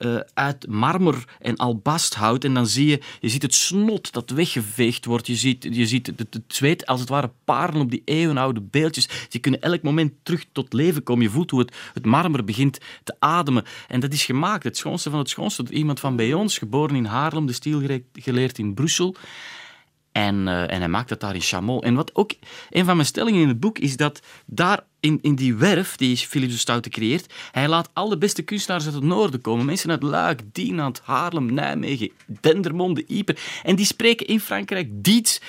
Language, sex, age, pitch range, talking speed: Dutch, male, 30-49, 120-160 Hz, 210 wpm